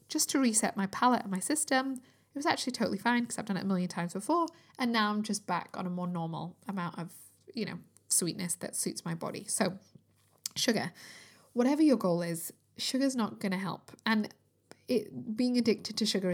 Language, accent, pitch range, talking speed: English, British, 185-230 Hz, 205 wpm